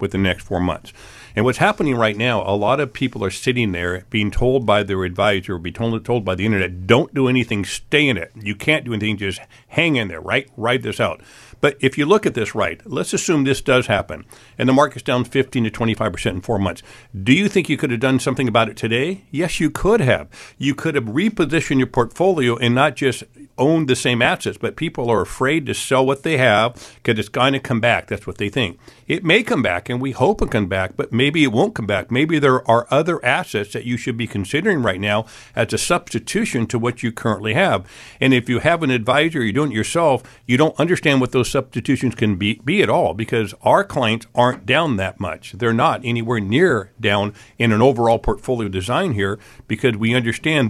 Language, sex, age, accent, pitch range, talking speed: English, male, 50-69, American, 105-135 Hz, 225 wpm